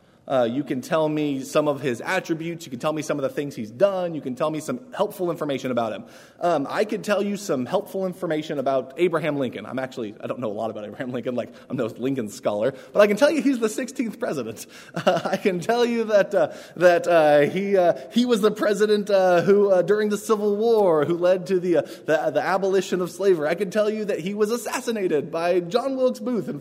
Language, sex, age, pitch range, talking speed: English, male, 20-39, 145-210 Hz, 245 wpm